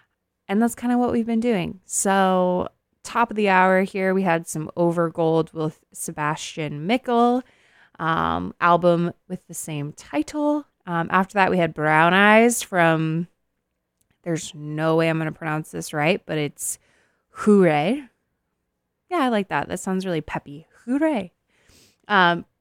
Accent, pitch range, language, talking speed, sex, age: American, 160-215 Hz, English, 150 wpm, female, 20-39